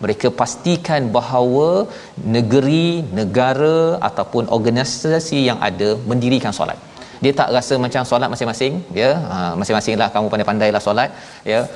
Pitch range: 120-145 Hz